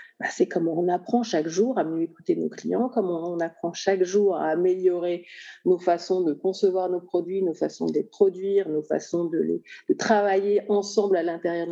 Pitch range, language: 180-255 Hz, French